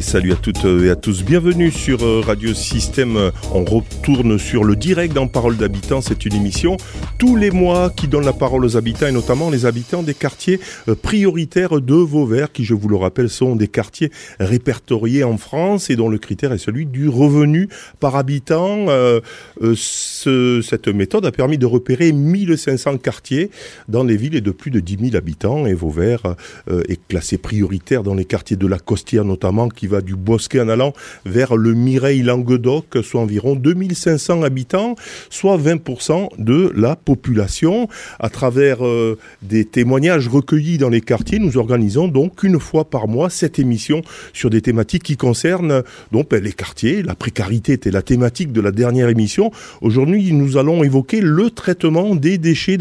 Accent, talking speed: French, 170 wpm